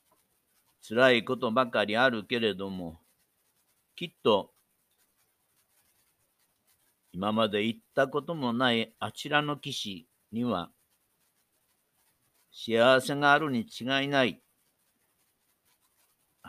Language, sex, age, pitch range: Japanese, male, 60-79, 110-135 Hz